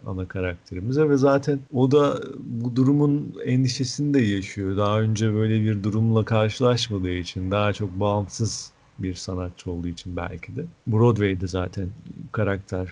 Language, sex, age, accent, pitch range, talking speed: Turkish, male, 50-69, native, 95-125 Hz, 140 wpm